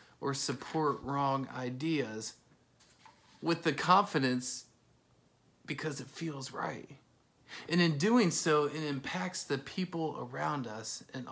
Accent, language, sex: American, English, male